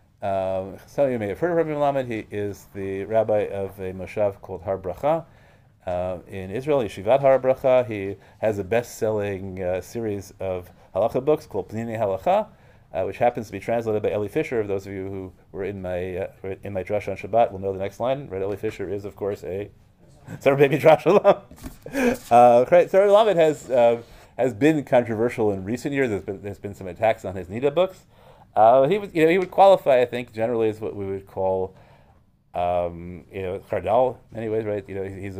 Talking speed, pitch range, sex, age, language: 210 wpm, 95-125 Hz, male, 30-49, English